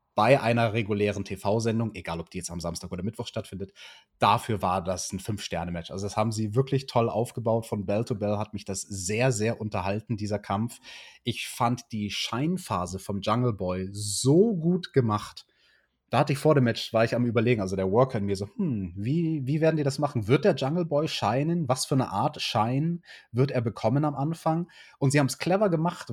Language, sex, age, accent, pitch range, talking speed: German, male, 30-49, German, 105-140 Hz, 210 wpm